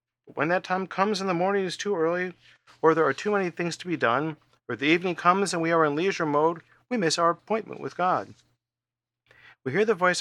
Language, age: English, 50-69